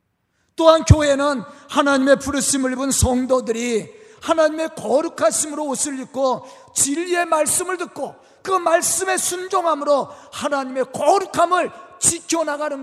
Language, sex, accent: Korean, male, native